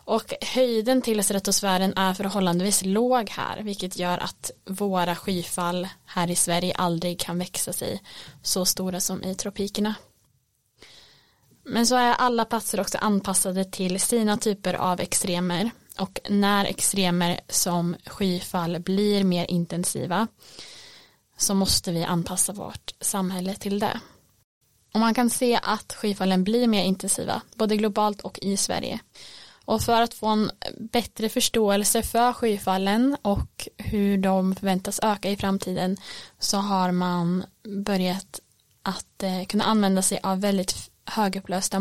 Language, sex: Swedish, female